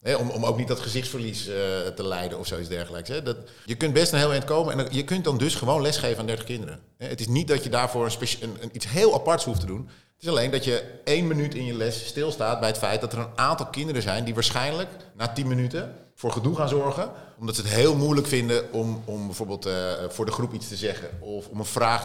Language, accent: Dutch, Dutch